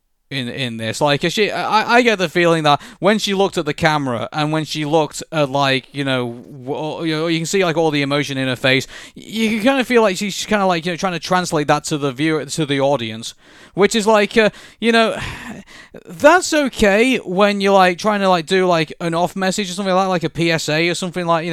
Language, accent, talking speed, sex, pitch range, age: English, British, 250 wpm, male, 150-200 Hz, 20-39